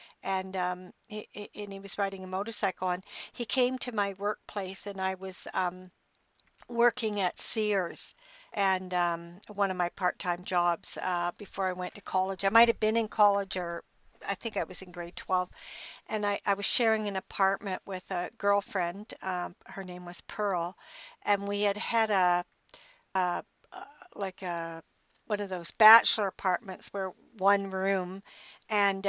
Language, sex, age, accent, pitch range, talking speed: English, female, 60-79, American, 185-210 Hz, 165 wpm